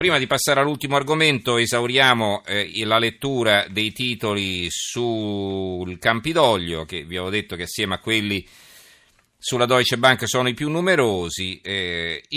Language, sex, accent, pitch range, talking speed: Italian, male, native, 100-120 Hz, 140 wpm